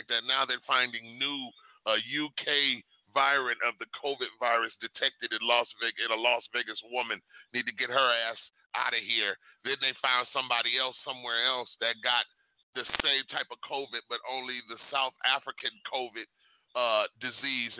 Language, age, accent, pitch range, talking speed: English, 40-59, American, 115-140 Hz, 170 wpm